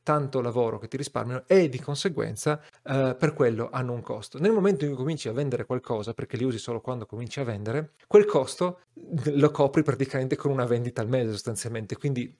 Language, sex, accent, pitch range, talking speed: Italian, male, native, 120-150 Hz, 205 wpm